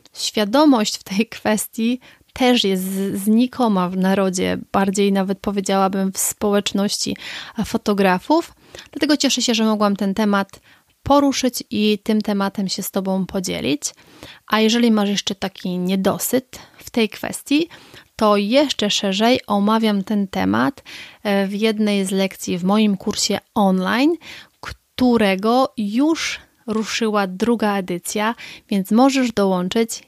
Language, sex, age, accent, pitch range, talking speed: Polish, female, 30-49, native, 195-225 Hz, 120 wpm